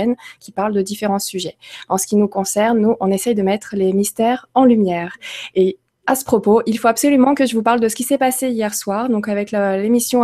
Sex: female